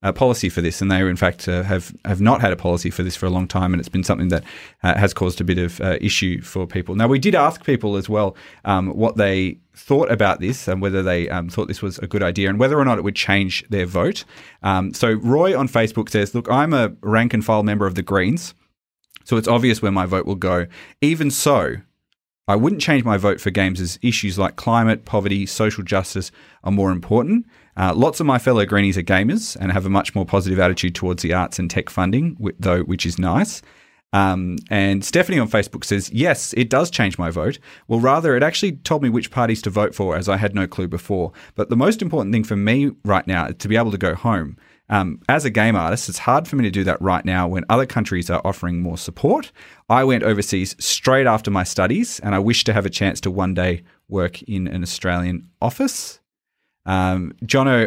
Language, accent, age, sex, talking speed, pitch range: English, Australian, 30-49, male, 235 wpm, 95-115 Hz